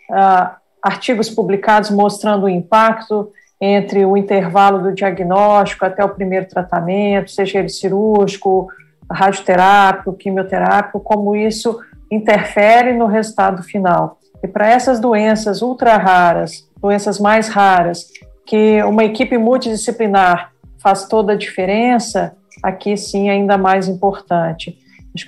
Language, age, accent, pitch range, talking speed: Portuguese, 50-69, Brazilian, 195-225 Hz, 115 wpm